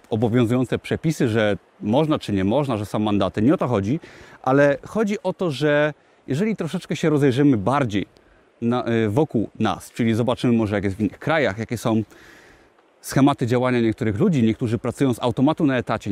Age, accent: 30-49, native